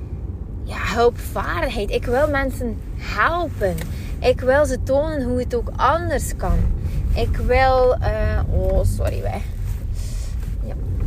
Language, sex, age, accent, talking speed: Dutch, female, 20-39, Dutch, 110 wpm